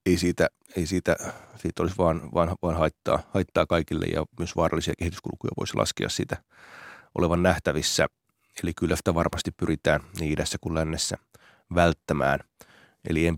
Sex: male